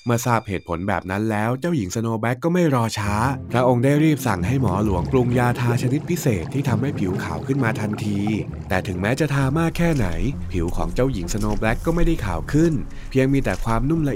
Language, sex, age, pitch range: Thai, male, 20-39, 100-130 Hz